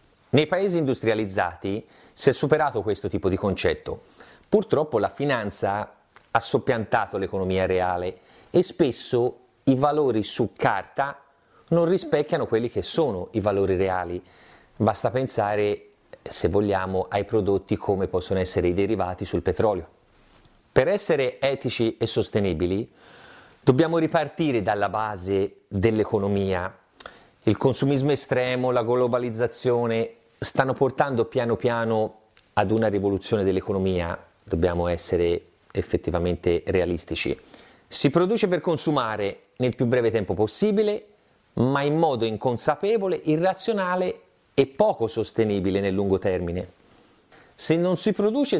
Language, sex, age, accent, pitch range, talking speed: Italian, male, 30-49, native, 100-140 Hz, 115 wpm